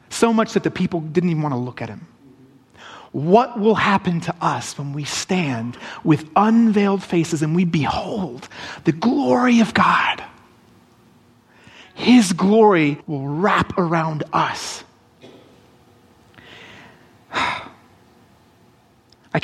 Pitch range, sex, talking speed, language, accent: 140-200 Hz, male, 115 wpm, English, American